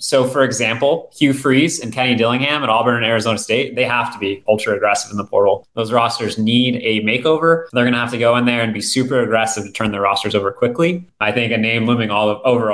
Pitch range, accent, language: 110-125 Hz, American, English